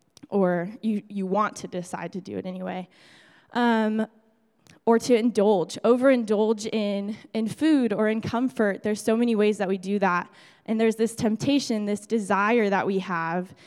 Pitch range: 190-235 Hz